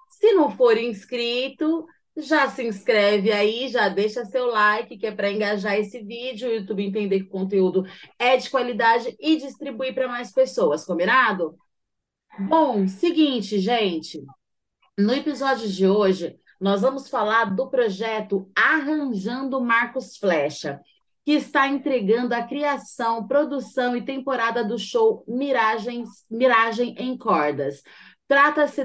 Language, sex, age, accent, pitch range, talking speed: Portuguese, female, 30-49, Brazilian, 215-265 Hz, 130 wpm